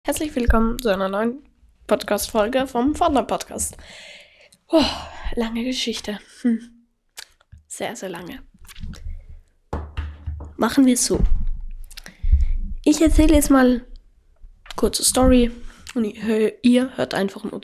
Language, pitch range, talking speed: German, 195-265 Hz, 110 wpm